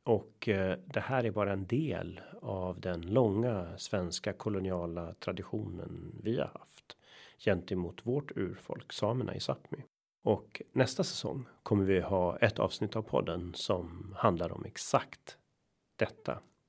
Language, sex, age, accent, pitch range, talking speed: Swedish, male, 40-59, native, 85-110 Hz, 135 wpm